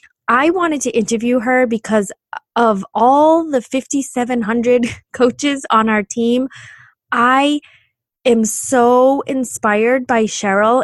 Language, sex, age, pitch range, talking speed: English, female, 20-39, 195-250 Hz, 110 wpm